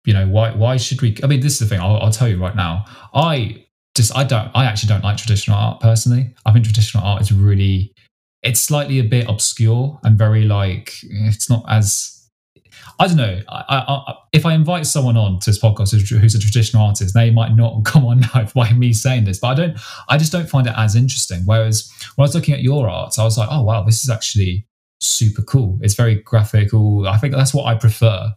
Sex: male